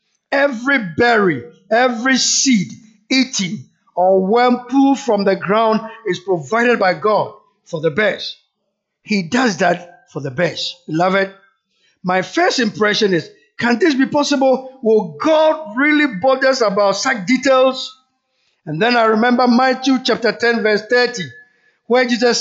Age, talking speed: 50-69, 140 wpm